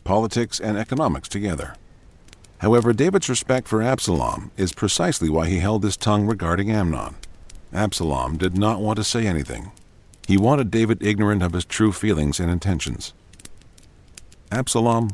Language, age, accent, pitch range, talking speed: English, 50-69, American, 85-110 Hz, 145 wpm